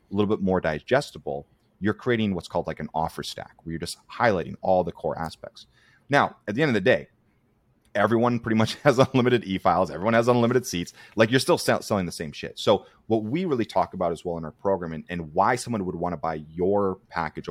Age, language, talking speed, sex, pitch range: 30-49, English, 225 wpm, male, 85-110 Hz